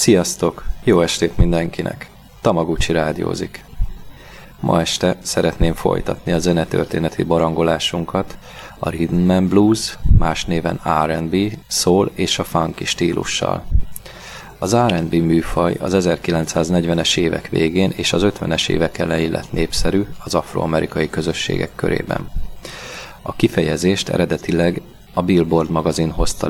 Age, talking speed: 30-49, 115 wpm